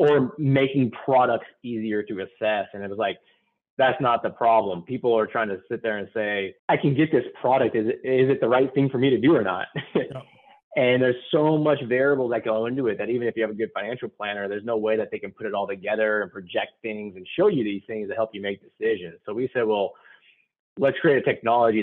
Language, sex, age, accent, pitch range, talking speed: English, male, 30-49, American, 100-135 Hz, 240 wpm